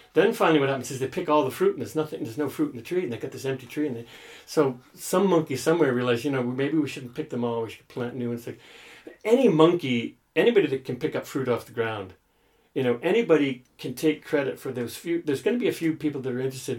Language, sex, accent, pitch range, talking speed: English, male, American, 125-190 Hz, 270 wpm